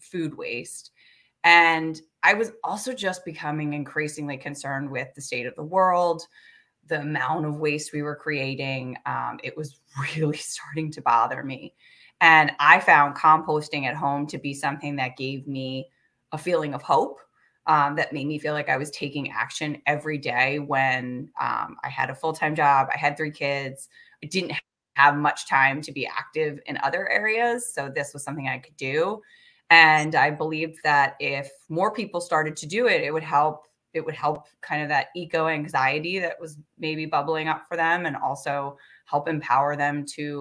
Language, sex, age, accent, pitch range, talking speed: English, female, 20-39, American, 140-165 Hz, 180 wpm